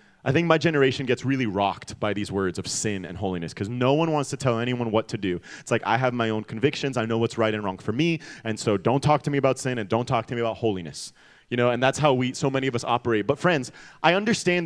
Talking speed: 285 wpm